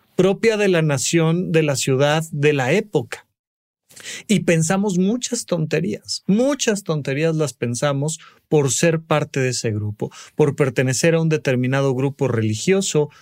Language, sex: Spanish, male